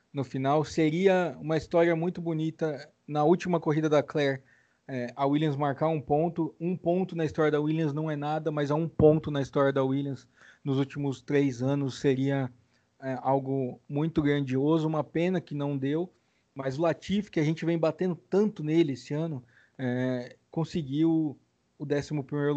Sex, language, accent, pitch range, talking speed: male, Portuguese, Brazilian, 135-160 Hz, 175 wpm